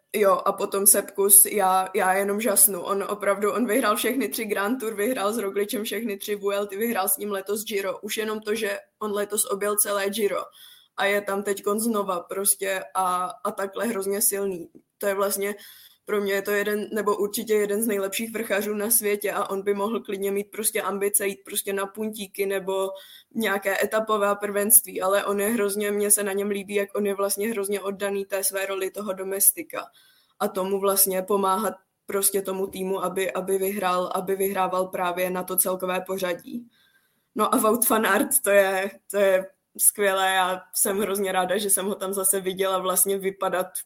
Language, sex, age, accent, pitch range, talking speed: Czech, female, 20-39, native, 185-205 Hz, 190 wpm